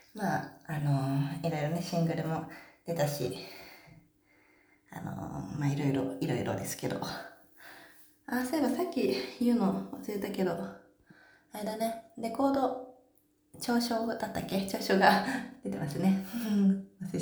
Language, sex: Japanese, female